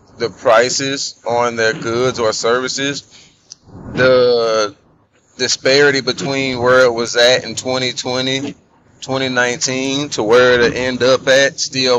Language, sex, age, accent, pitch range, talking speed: English, male, 30-49, American, 115-130 Hz, 120 wpm